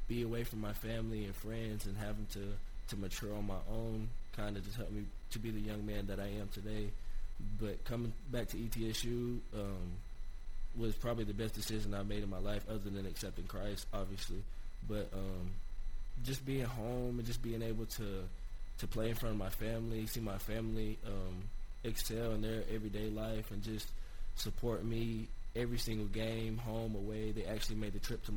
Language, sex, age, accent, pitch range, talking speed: English, male, 20-39, American, 100-115 Hz, 190 wpm